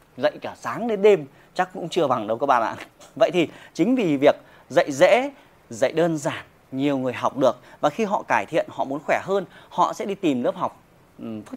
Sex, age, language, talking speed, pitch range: male, 30-49, Vietnamese, 225 wpm, 150-215 Hz